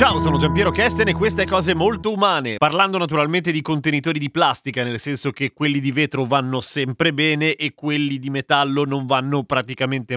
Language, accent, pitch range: Italian, native, 140-185 Hz